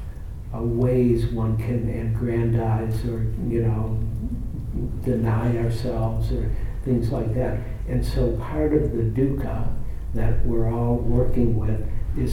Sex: male